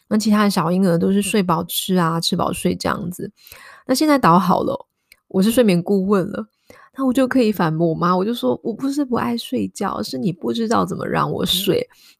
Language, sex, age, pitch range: Chinese, female, 20-39, 170-215 Hz